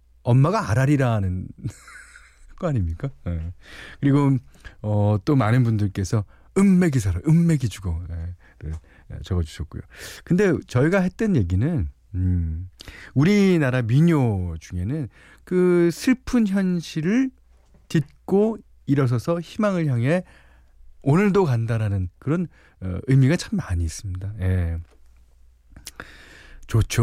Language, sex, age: Korean, male, 40-59